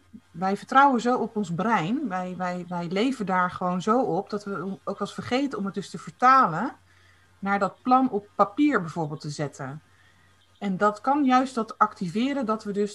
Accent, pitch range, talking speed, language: Dutch, 180-225 Hz, 190 wpm, Dutch